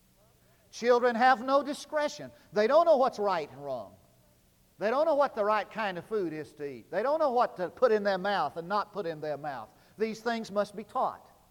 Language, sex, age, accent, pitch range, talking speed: English, male, 50-69, American, 185-250 Hz, 225 wpm